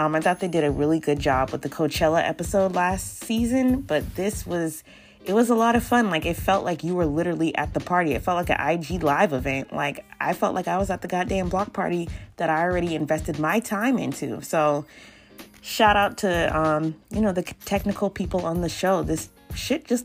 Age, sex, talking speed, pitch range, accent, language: 20-39, female, 225 wpm, 150-200 Hz, American, English